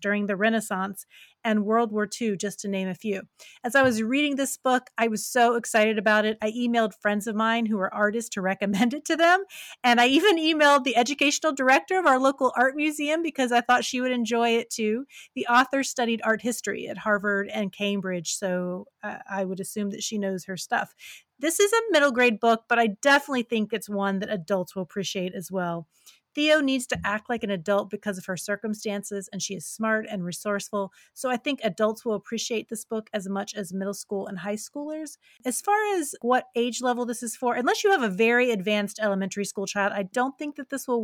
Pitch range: 205-255 Hz